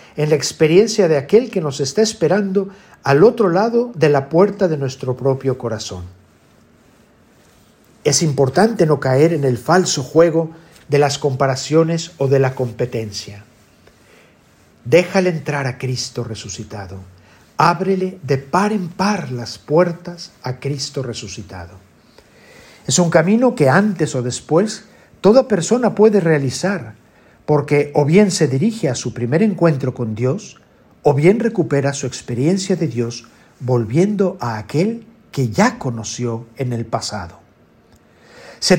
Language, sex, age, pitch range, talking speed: Spanish, male, 50-69, 125-190 Hz, 135 wpm